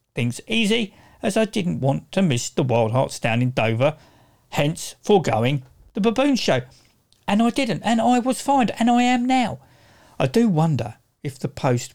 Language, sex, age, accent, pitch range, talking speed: English, male, 50-69, British, 125-195 Hz, 180 wpm